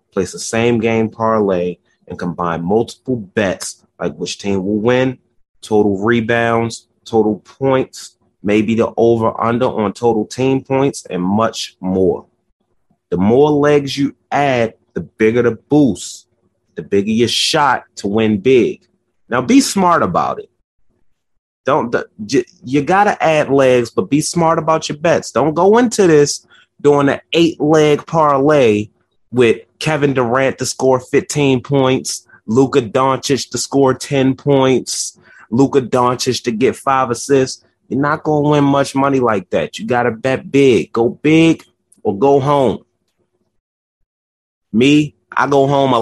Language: English